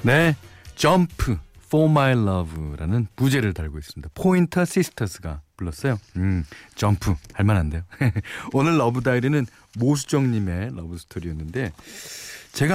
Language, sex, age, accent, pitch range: Korean, male, 40-59, native, 95-140 Hz